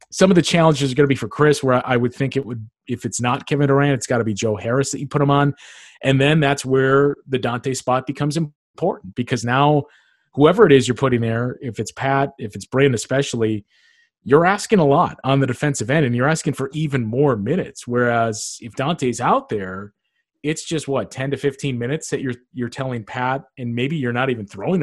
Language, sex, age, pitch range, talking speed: English, male, 30-49, 120-150 Hz, 225 wpm